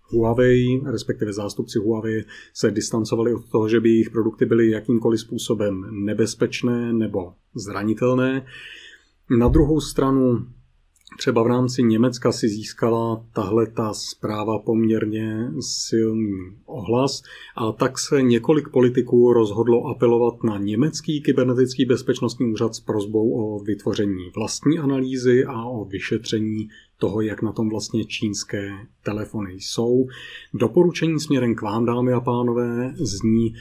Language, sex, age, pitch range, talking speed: Czech, male, 30-49, 110-125 Hz, 125 wpm